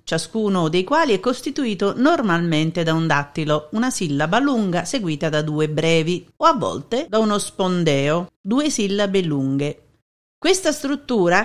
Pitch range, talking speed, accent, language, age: 160-245 Hz, 140 wpm, native, Italian, 50-69